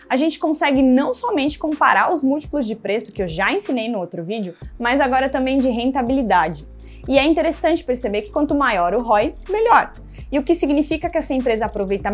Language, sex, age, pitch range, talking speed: English, female, 20-39, 220-290 Hz, 200 wpm